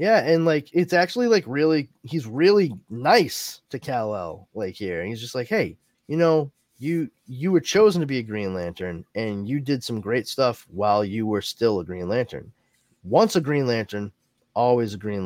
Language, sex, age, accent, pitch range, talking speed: English, male, 20-39, American, 105-160 Hz, 195 wpm